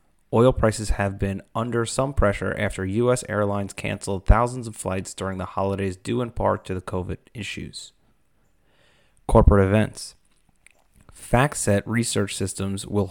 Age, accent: 30-49, American